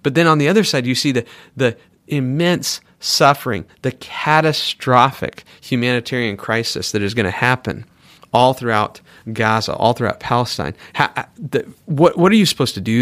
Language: English